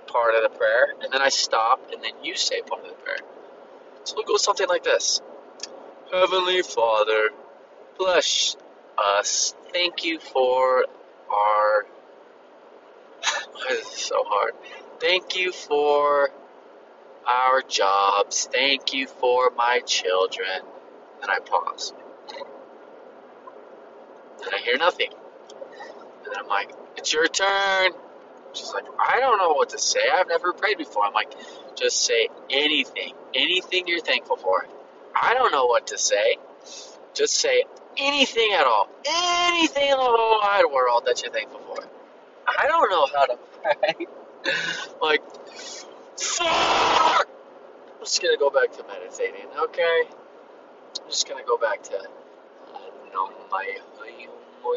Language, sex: English, male